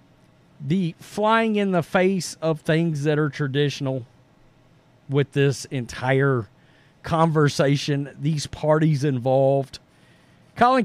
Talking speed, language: 100 wpm, English